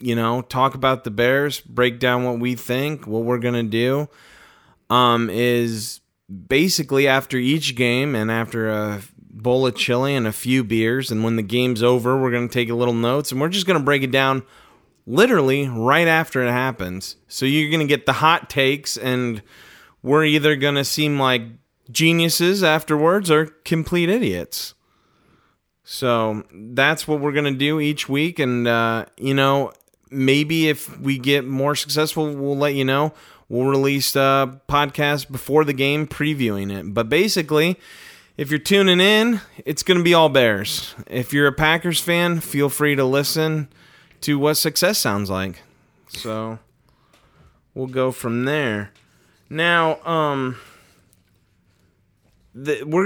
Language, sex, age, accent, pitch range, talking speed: English, male, 30-49, American, 120-155 Hz, 160 wpm